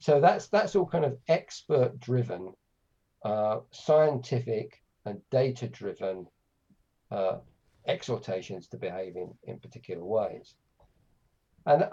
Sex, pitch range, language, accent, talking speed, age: male, 105-130 Hz, Greek, British, 110 wpm, 50-69